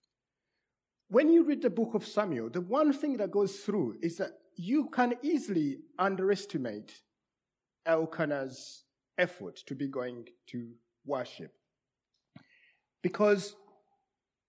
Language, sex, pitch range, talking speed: English, male, 135-195 Hz, 110 wpm